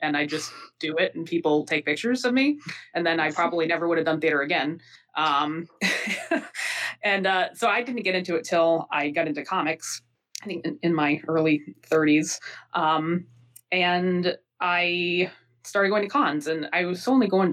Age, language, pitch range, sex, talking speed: 20-39, English, 145-180 Hz, female, 185 wpm